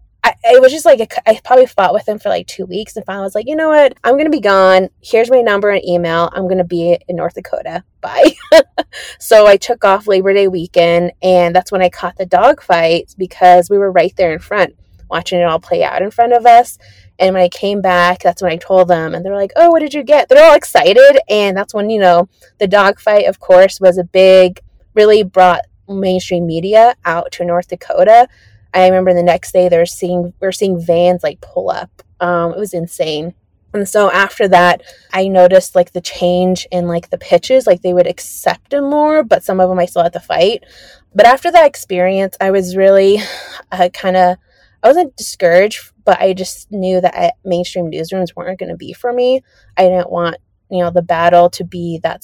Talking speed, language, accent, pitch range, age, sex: 225 wpm, English, American, 175-215 Hz, 20-39, female